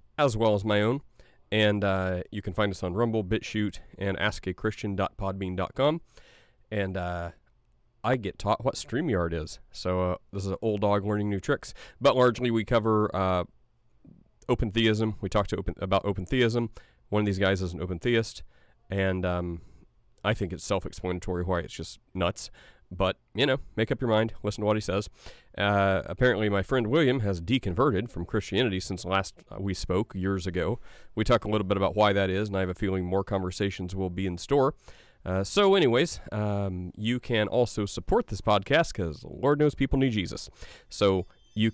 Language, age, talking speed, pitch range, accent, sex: English, 30-49, 190 wpm, 95-115 Hz, American, male